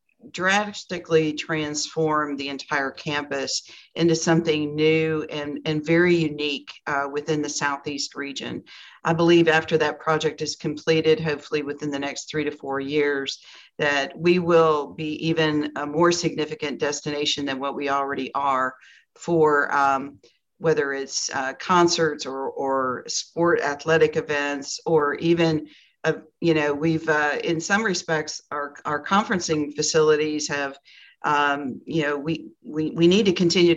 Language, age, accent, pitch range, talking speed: English, 50-69, American, 145-165 Hz, 145 wpm